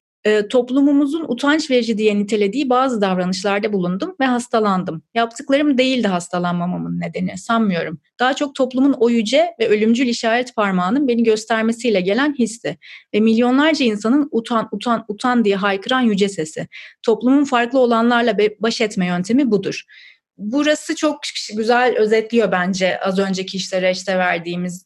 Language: Turkish